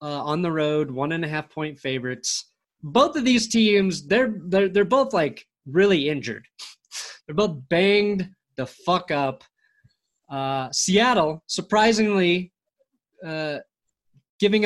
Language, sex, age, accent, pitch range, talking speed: English, male, 30-49, American, 150-190 Hz, 125 wpm